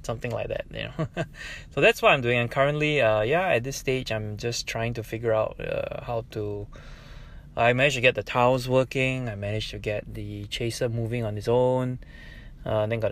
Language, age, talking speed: English, 20-39, 210 wpm